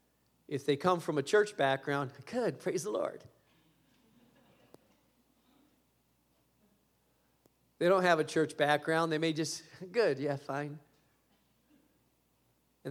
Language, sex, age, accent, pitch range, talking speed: English, male, 40-59, American, 140-215 Hz, 110 wpm